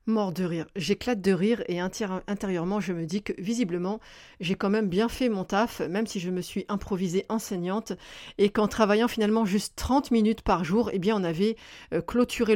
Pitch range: 185-225 Hz